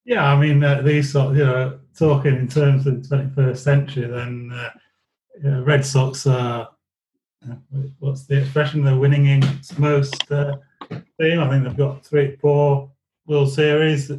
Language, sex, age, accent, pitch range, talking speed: English, male, 30-49, British, 130-145 Hz, 180 wpm